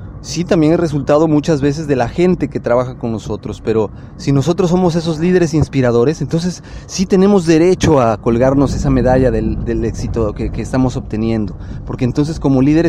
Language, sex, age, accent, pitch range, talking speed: Spanish, male, 30-49, Mexican, 115-160 Hz, 180 wpm